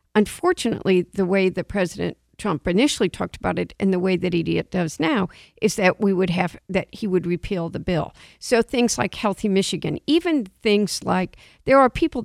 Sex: female